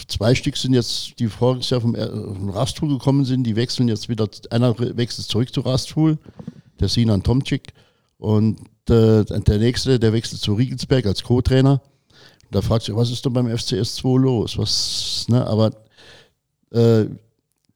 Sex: male